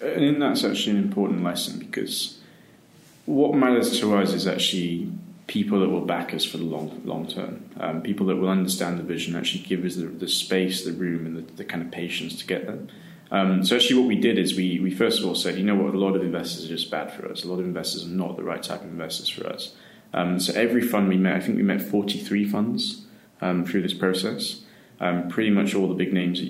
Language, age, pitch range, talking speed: English, 20-39, 85-100 Hz, 245 wpm